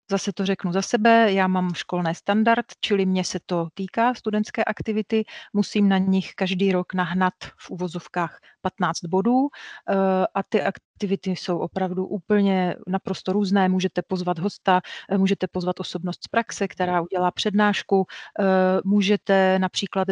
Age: 40-59